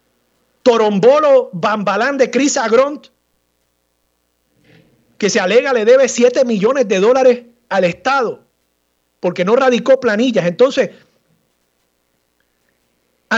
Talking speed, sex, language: 95 wpm, male, Spanish